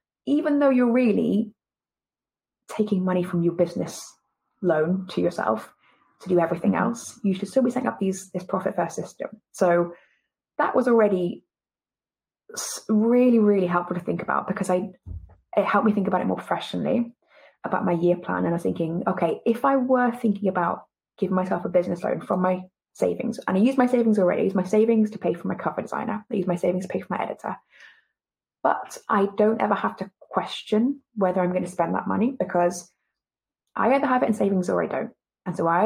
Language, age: English, 20-39